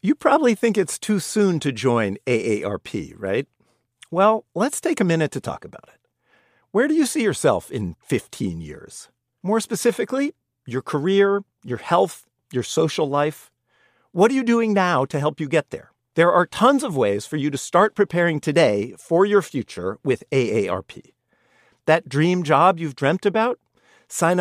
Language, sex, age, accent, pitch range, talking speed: English, male, 50-69, American, 130-190 Hz, 170 wpm